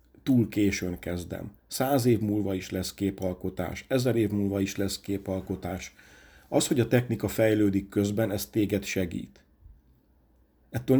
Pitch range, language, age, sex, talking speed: 95-115 Hz, Hungarian, 50-69, male, 135 wpm